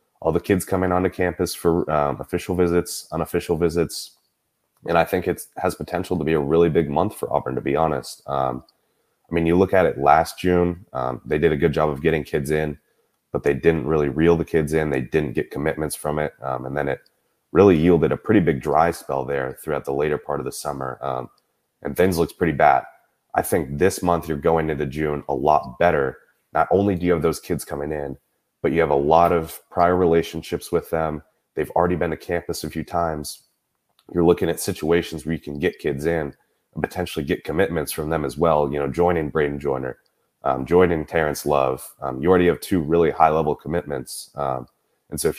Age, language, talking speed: 30-49, English, 220 wpm